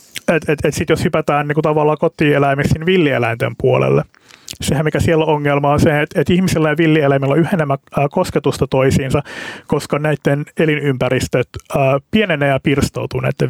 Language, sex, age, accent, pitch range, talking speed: Finnish, male, 30-49, native, 135-160 Hz, 155 wpm